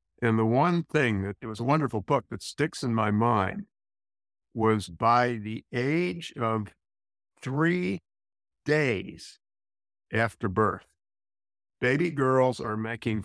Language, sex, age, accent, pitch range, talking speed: English, male, 50-69, American, 100-125 Hz, 125 wpm